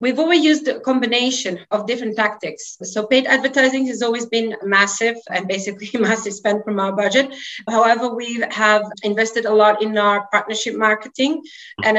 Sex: female